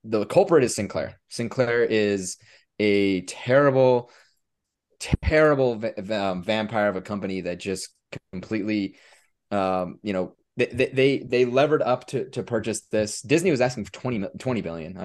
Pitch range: 95-115 Hz